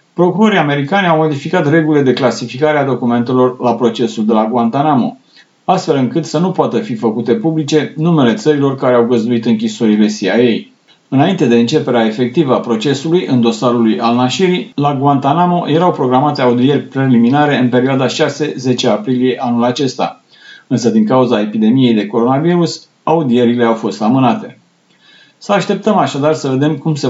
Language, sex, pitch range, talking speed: Romanian, male, 120-155 Hz, 150 wpm